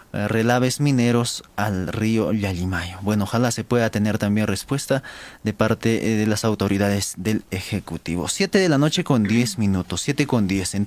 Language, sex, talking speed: Spanish, male, 165 wpm